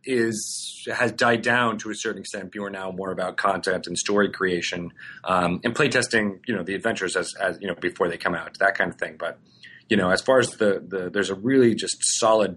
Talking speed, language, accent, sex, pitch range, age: 235 wpm, English, American, male, 90-110 Hz, 30-49